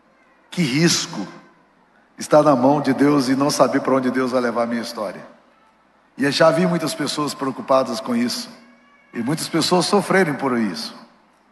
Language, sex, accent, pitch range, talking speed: Portuguese, male, Brazilian, 145-210 Hz, 170 wpm